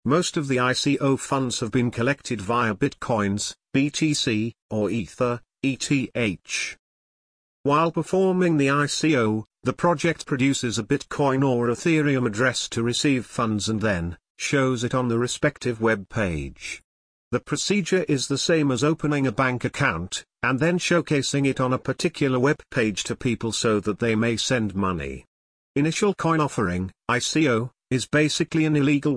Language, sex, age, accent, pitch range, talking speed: English, male, 50-69, British, 110-145 Hz, 150 wpm